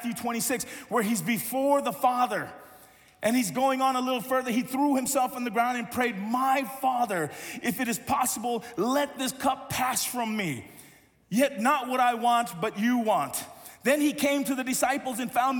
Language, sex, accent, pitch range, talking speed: English, male, American, 190-270 Hz, 190 wpm